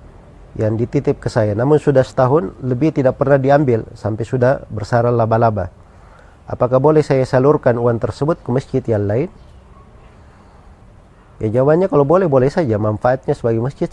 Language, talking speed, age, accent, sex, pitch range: Indonesian, 145 wpm, 40-59, native, male, 105-135 Hz